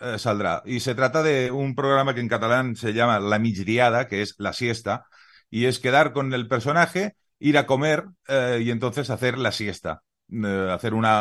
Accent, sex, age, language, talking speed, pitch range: Spanish, male, 40-59, Spanish, 200 wpm, 110-140 Hz